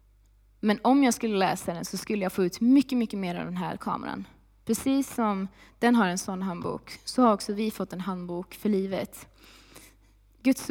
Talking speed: 195 wpm